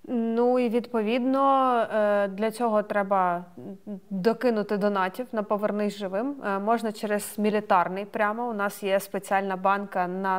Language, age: Ukrainian, 20-39